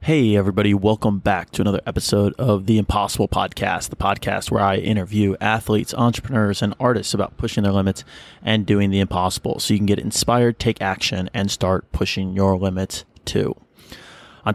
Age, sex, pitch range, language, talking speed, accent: 20-39, male, 100-115 Hz, English, 175 wpm, American